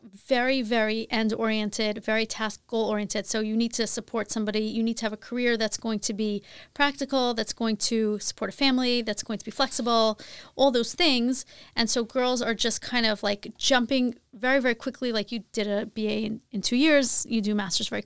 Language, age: English, 30-49